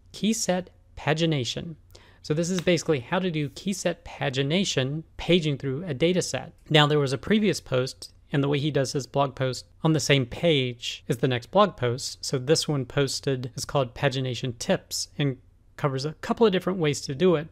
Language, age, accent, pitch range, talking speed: English, 40-59, American, 125-150 Hz, 200 wpm